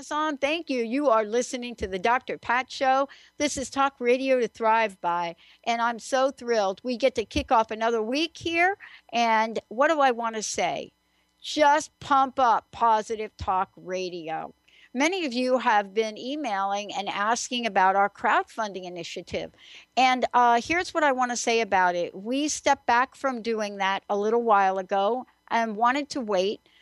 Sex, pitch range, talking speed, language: female, 205-255 Hz, 175 wpm, English